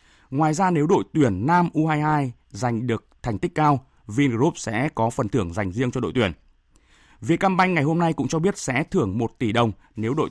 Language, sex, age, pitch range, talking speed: Vietnamese, male, 20-39, 120-155 Hz, 210 wpm